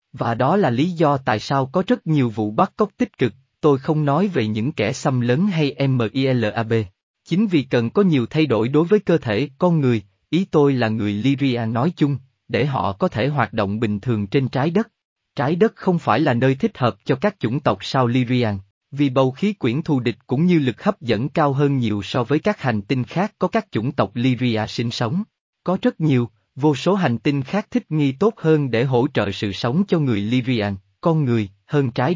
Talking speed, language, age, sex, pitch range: 225 wpm, Vietnamese, 20-39, male, 120-165 Hz